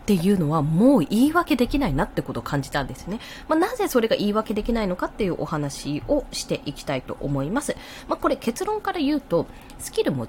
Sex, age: female, 20-39